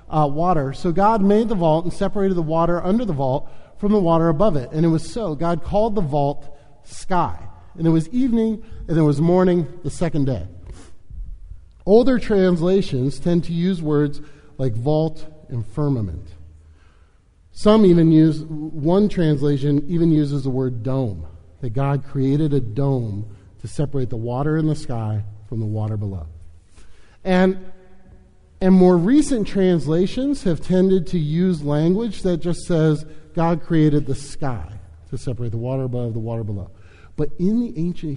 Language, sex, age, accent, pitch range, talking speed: English, male, 40-59, American, 110-180 Hz, 165 wpm